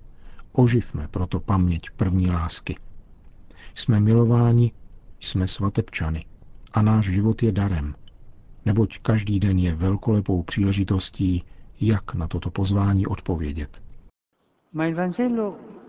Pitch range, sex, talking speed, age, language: 95-115 Hz, male, 95 wpm, 50-69, Czech